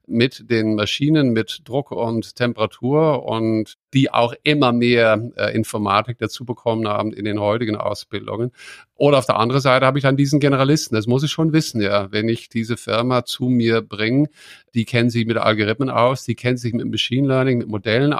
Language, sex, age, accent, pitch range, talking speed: English, male, 50-69, German, 110-125 Hz, 190 wpm